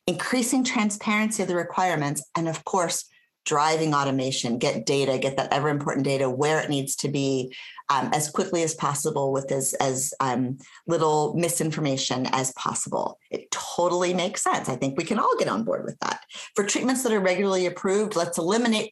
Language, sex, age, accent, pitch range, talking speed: English, female, 40-59, American, 150-215 Hz, 180 wpm